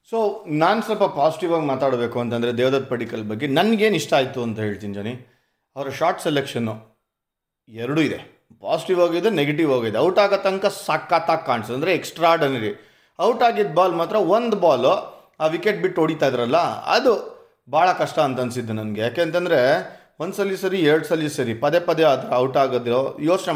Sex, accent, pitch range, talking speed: male, native, 125-180 Hz, 160 wpm